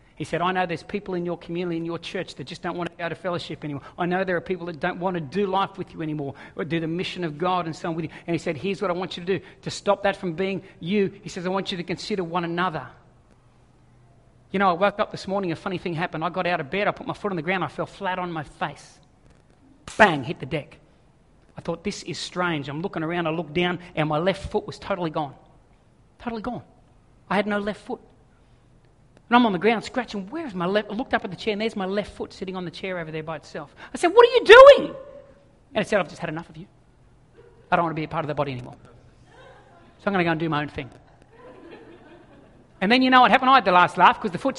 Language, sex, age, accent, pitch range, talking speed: English, male, 40-59, Australian, 165-200 Hz, 280 wpm